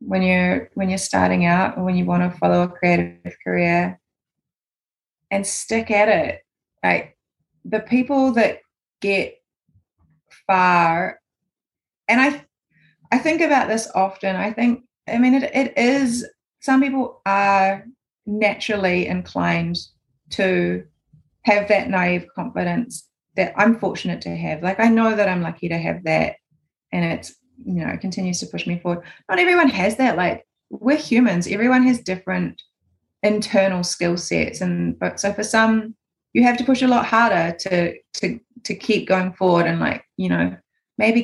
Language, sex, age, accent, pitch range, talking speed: English, female, 30-49, Australian, 165-220 Hz, 160 wpm